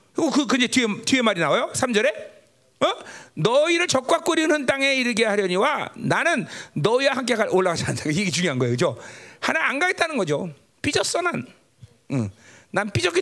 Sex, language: male, Korean